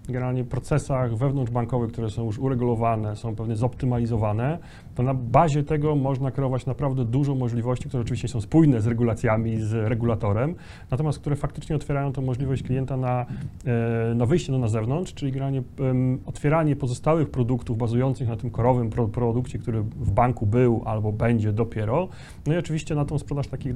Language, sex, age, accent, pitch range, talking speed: Polish, male, 30-49, native, 120-145 Hz, 165 wpm